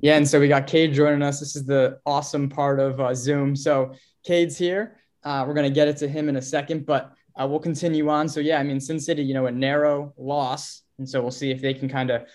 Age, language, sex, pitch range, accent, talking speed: 20-39, English, male, 130-145 Hz, American, 260 wpm